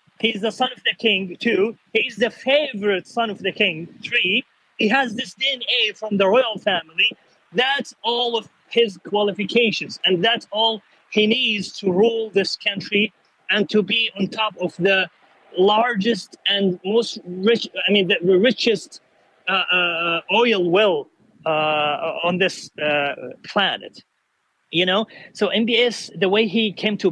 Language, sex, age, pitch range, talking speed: Danish, male, 30-49, 185-225 Hz, 155 wpm